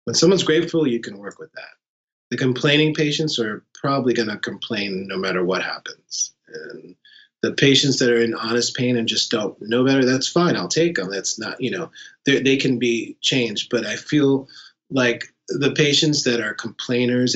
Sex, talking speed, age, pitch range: male, 190 wpm, 30-49, 110-135 Hz